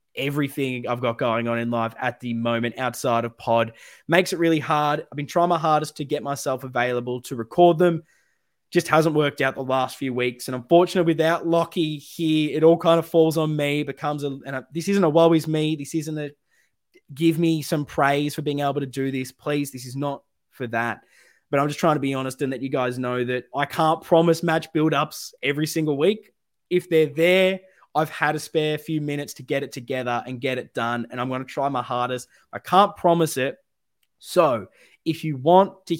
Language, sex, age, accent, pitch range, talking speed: English, male, 20-39, Australian, 125-155 Hz, 220 wpm